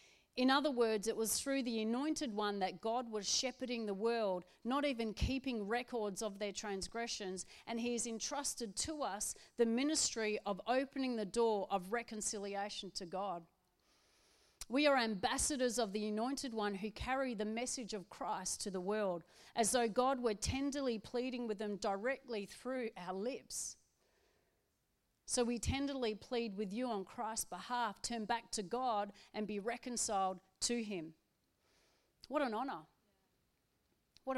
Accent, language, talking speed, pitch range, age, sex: Australian, English, 155 wpm, 205-260 Hz, 40-59, female